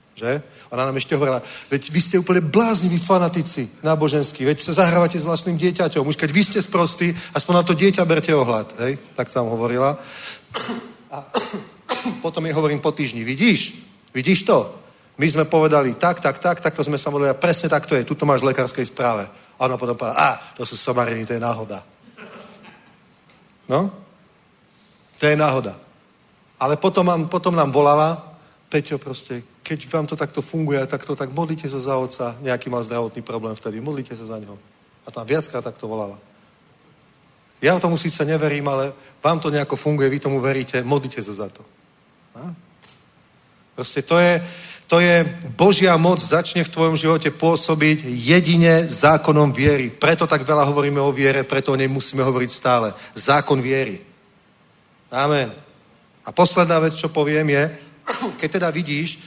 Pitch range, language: 135-170 Hz, Czech